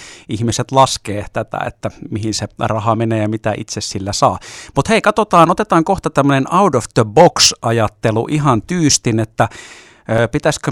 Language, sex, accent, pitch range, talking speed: Finnish, male, native, 105-125 Hz, 155 wpm